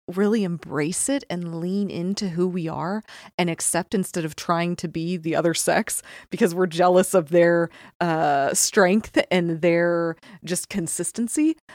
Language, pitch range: English, 170-210 Hz